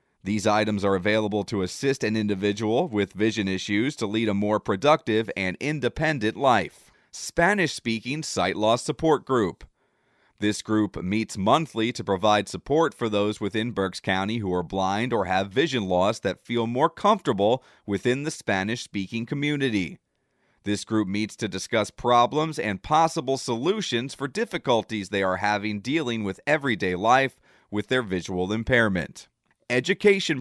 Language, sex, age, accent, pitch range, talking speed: English, male, 30-49, American, 105-130 Hz, 145 wpm